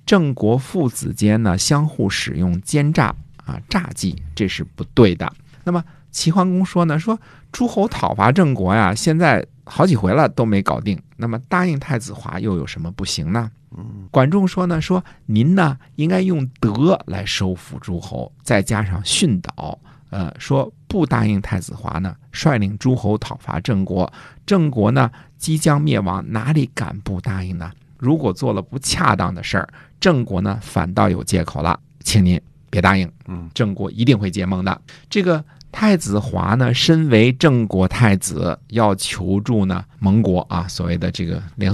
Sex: male